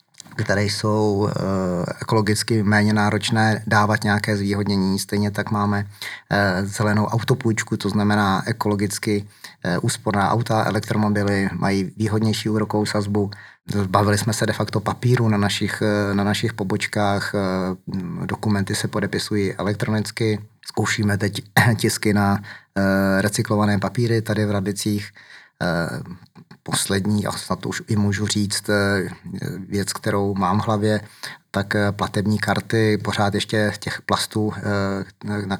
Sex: male